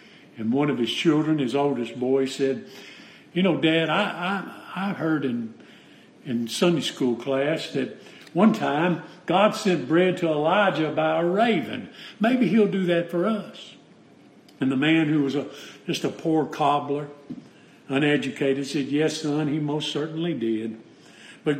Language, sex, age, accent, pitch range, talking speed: English, male, 50-69, American, 155-205 Hz, 160 wpm